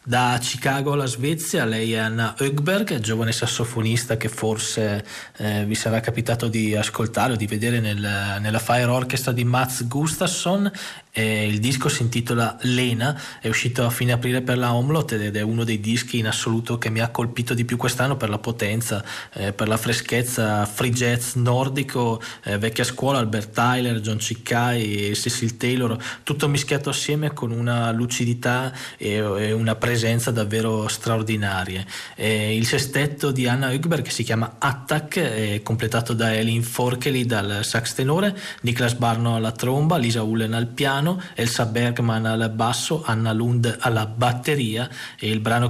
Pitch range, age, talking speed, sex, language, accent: 110-125 Hz, 20-39, 165 wpm, male, Italian, native